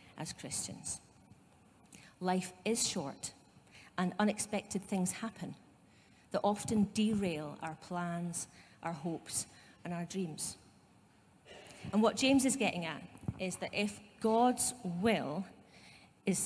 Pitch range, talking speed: 175-210 Hz, 115 wpm